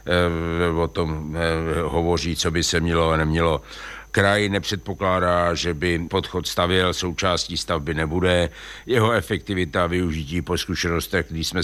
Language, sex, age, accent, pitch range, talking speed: Czech, male, 60-79, native, 85-95 Hz, 130 wpm